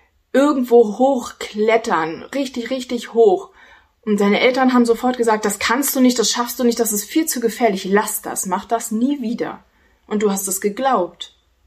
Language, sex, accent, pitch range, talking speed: German, female, German, 205-255 Hz, 180 wpm